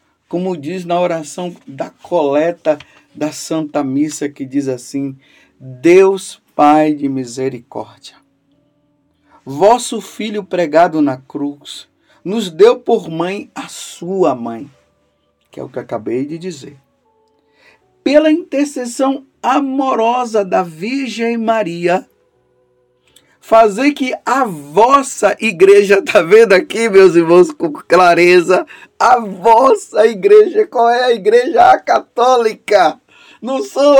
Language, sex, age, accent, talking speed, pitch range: Portuguese, male, 50-69, Brazilian, 110 wpm, 180-280 Hz